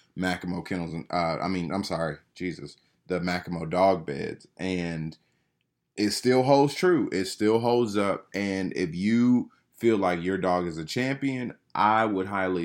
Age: 20-39